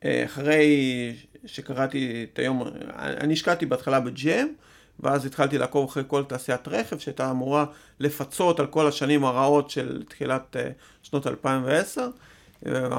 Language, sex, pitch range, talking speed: Hebrew, male, 135-160 Hz, 120 wpm